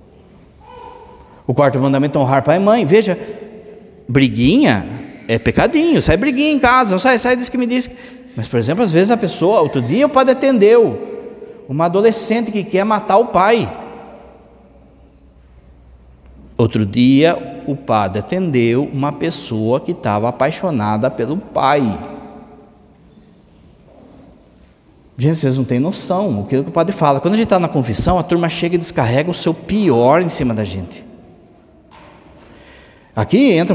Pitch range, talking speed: 135-215 Hz, 150 wpm